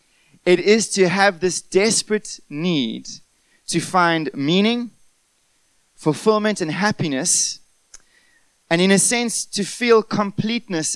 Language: English